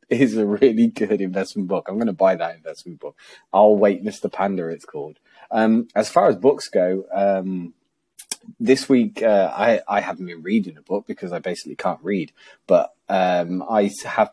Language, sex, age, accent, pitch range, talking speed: English, male, 30-49, British, 95-105 Hz, 190 wpm